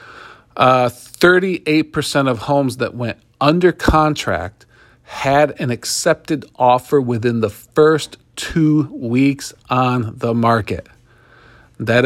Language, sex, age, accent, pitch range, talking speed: English, male, 40-59, American, 115-145 Hz, 105 wpm